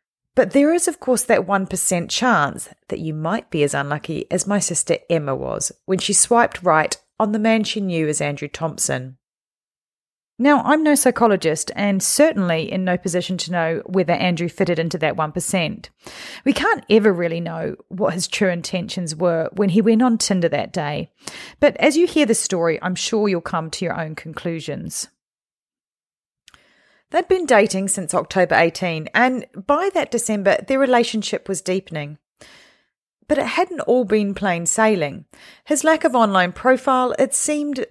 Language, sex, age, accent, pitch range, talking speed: English, female, 40-59, Australian, 170-235 Hz, 170 wpm